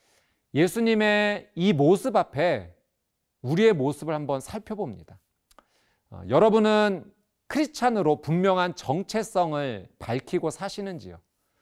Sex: male